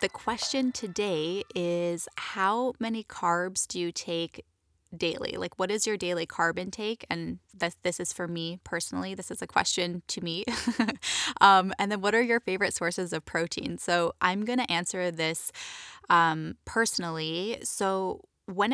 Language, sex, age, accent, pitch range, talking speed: English, female, 10-29, American, 170-200 Hz, 165 wpm